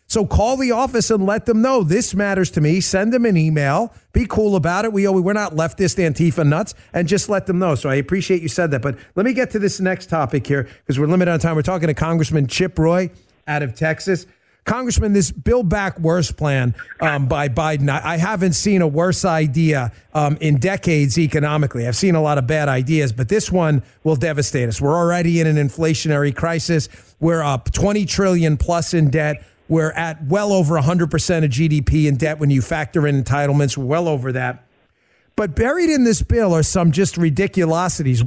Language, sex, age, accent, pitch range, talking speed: English, male, 40-59, American, 150-215 Hz, 210 wpm